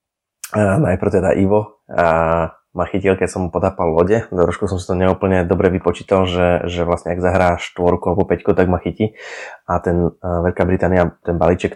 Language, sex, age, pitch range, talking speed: Slovak, male, 20-39, 90-100 Hz, 190 wpm